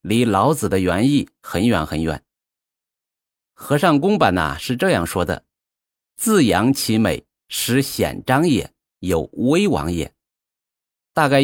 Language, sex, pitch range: Chinese, male, 95-135 Hz